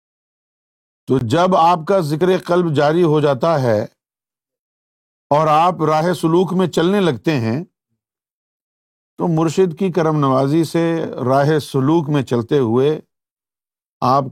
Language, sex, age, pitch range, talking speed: Urdu, male, 50-69, 140-200 Hz, 125 wpm